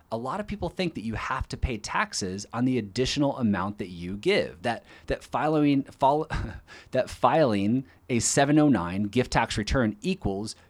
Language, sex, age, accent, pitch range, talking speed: English, male, 30-49, American, 105-145 Hz, 165 wpm